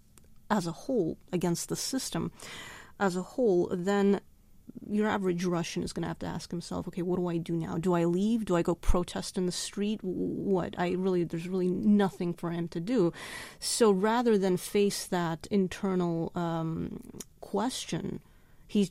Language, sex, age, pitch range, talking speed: English, female, 30-49, 175-210 Hz, 175 wpm